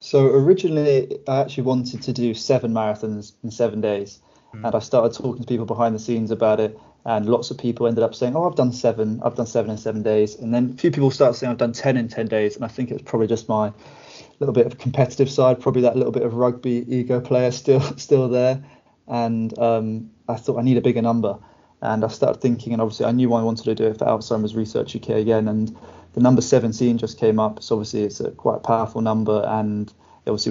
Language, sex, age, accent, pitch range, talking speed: English, male, 20-39, British, 110-120 Hz, 240 wpm